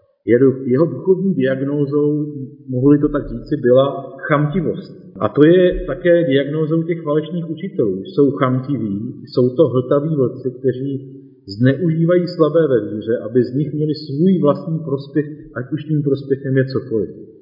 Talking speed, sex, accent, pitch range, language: 140 wpm, male, native, 125-155 Hz, Czech